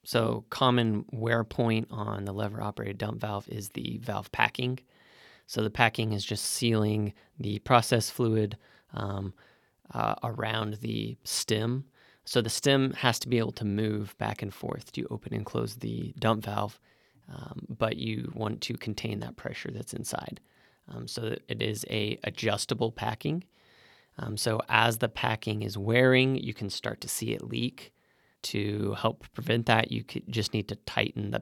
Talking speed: 170 wpm